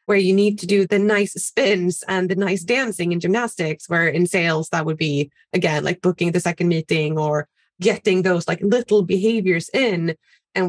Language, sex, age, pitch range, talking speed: English, female, 20-39, 175-220 Hz, 190 wpm